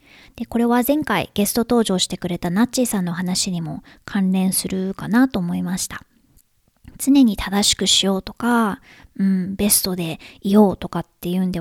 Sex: male